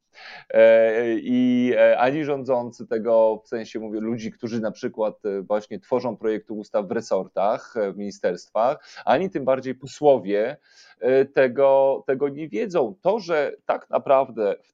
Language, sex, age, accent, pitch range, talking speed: Polish, male, 30-49, native, 115-155 Hz, 130 wpm